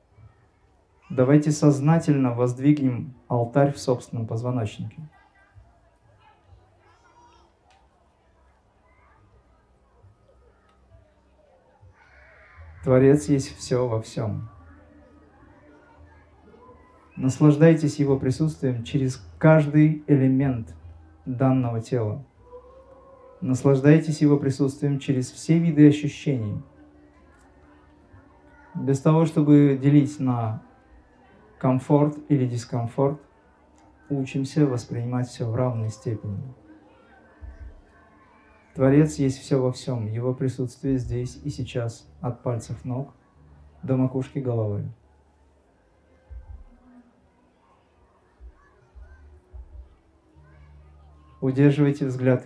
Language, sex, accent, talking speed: Russian, male, native, 65 wpm